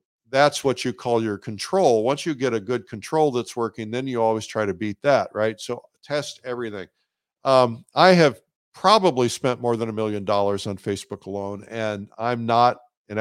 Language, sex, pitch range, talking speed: English, male, 110-135 Hz, 190 wpm